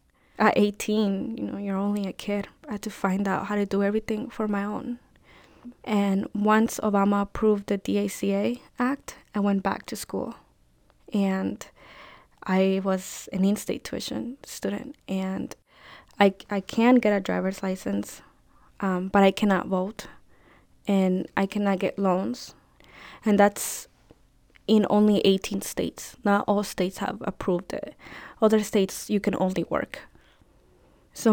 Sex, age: female, 10-29